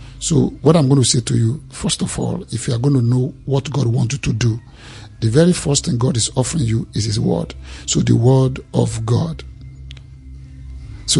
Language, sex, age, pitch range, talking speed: English, male, 50-69, 110-140 Hz, 215 wpm